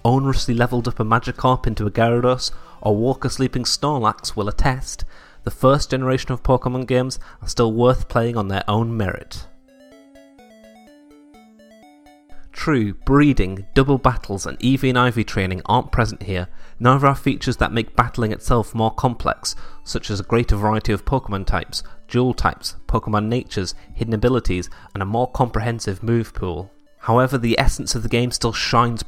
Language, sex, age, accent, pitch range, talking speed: English, male, 30-49, British, 100-125 Hz, 160 wpm